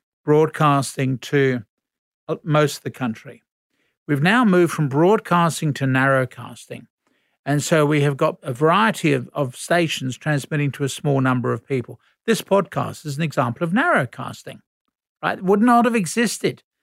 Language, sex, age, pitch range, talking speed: English, male, 50-69, 140-180 Hz, 155 wpm